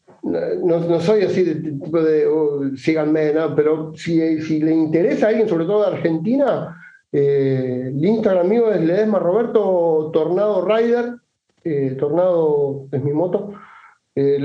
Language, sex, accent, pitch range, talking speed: Spanish, male, Argentinian, 160-220 Hz, 150 wpm